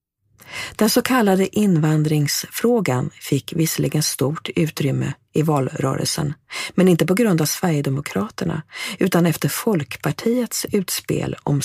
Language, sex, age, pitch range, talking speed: English, female, 40-59, 135-180 Hz, 110 wpm